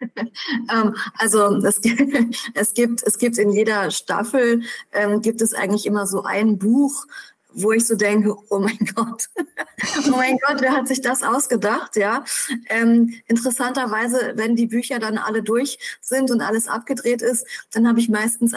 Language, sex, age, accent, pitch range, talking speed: German, female, 20-39, German, 210-240 Hz, 160 wpm